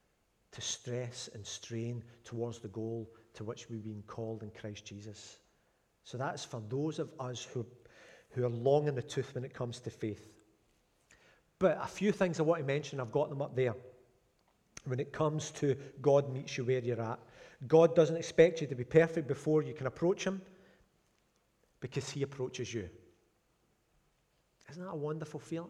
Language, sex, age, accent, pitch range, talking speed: English, male, 40-59, British, 125-155 Hz, 175 wpm